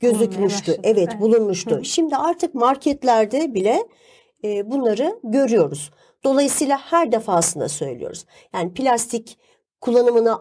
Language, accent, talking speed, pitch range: Turkish, native, 90 wpm, 215-300 Hz